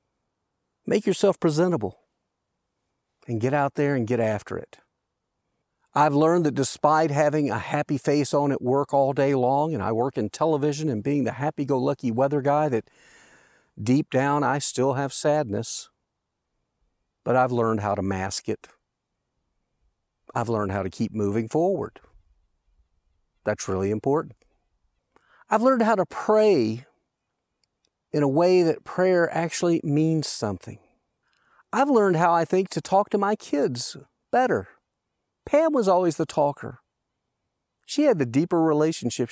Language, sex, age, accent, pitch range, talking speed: English, male, 50-69, American, 115-160 Hz, 145 wpm